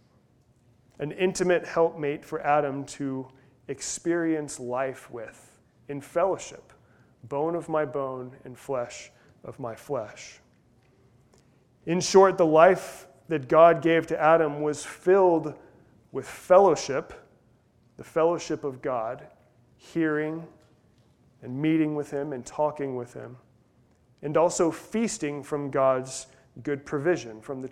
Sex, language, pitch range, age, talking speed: male, English, 135-165 Hz, 30-49, 120 wpm